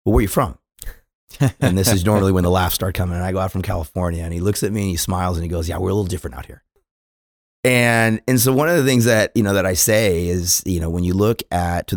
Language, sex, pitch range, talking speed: English, male, 90-125 Hz, 295 wpm